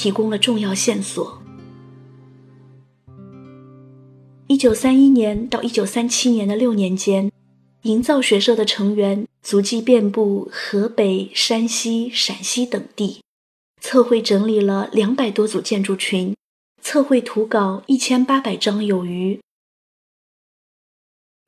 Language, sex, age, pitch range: Chinese, female, 20-39, 200-245 Hz